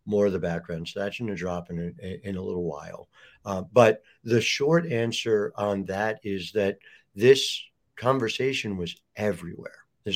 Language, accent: English, American